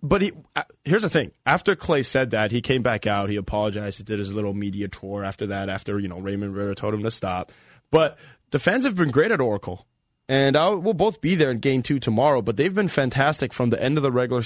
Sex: male